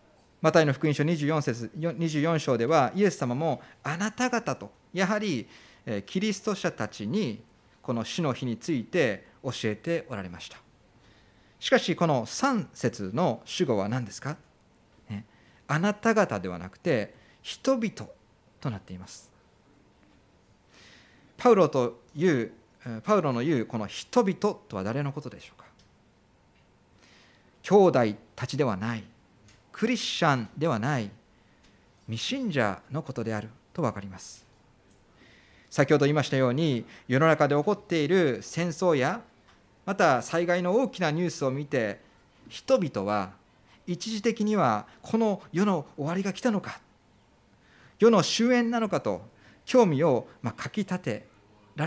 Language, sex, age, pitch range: Japanese, male, 40-59, 110-180 Hz